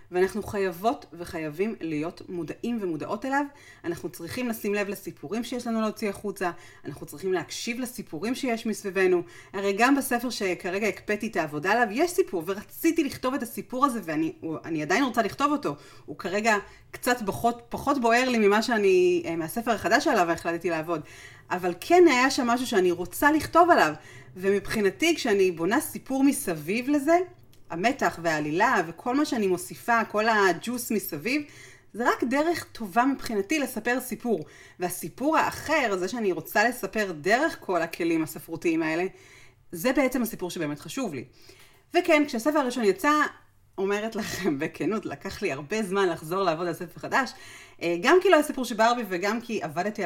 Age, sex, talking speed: 30-49, female, 155 wpm